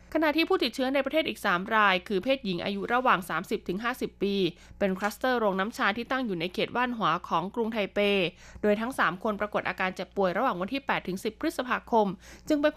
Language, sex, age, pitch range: Thai, female, 20-39, 190-240 Hz